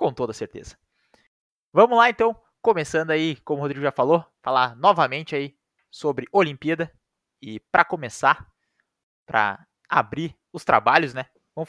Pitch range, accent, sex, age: 135-175 Hz, Brazilian, male, 20-39